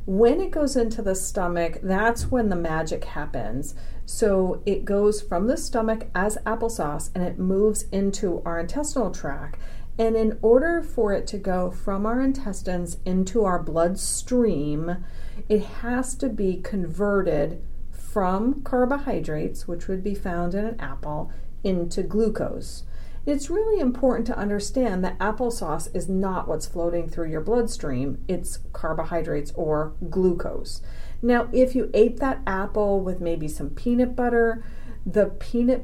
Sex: female